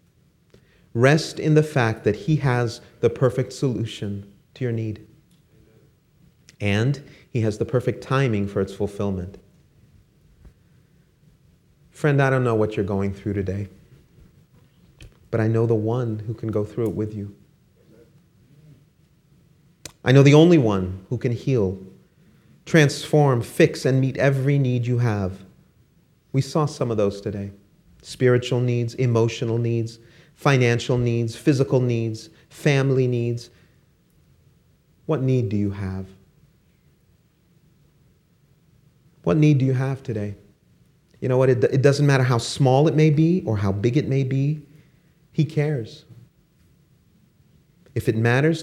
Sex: male